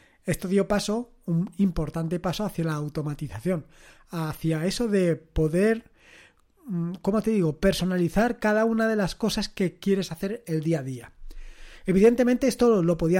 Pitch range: 165-205 Hz